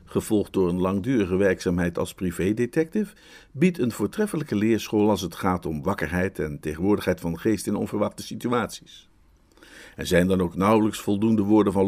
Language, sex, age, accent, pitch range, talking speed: Dutch, male, 50-69, Dutch, 95-120 Hz, 160 wpm